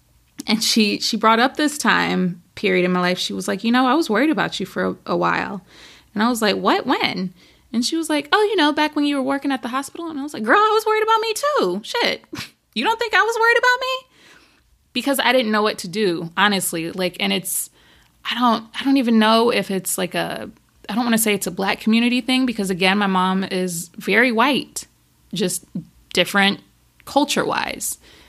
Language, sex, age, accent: English, female, 20-39, American